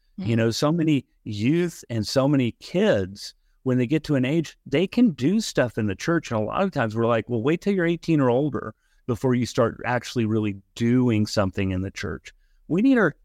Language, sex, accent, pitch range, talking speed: English, male, American, 105-140 Hz, 220 wpm